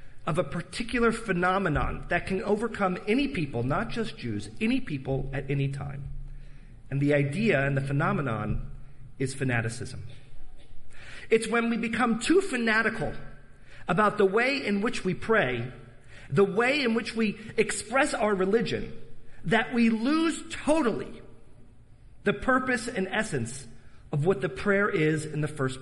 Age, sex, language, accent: 40-59, male, English, American